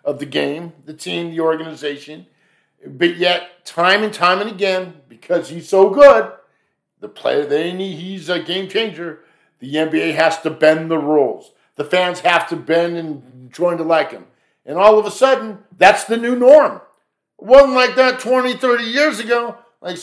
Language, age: English, 50-69